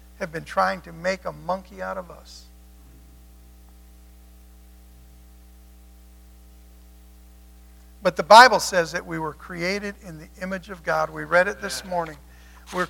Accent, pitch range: American, 155-260 Hz